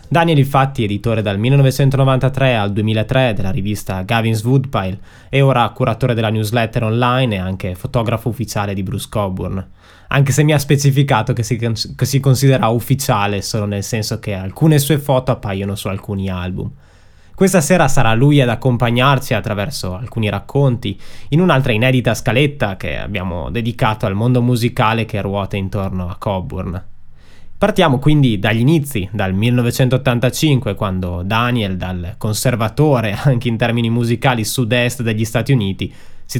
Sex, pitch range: male, 100-130 Hz